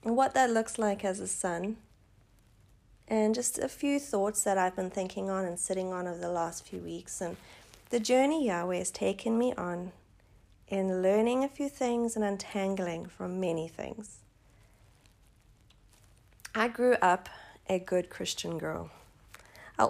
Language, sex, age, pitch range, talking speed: English, female, 30-49, 180-245 Hz, 155 wpm